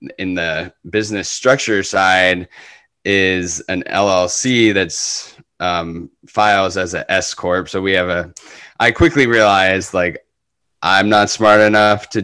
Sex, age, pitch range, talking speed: male, 10-29, 90-100 Hz, 135 wpm